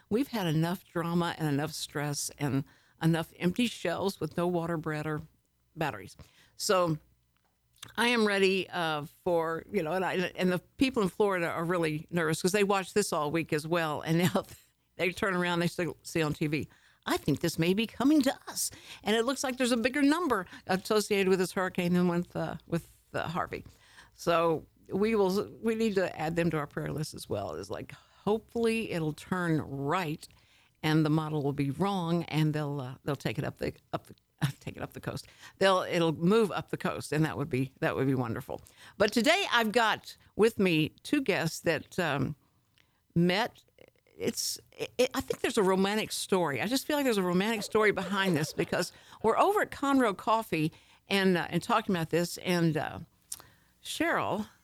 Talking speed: 195 wpm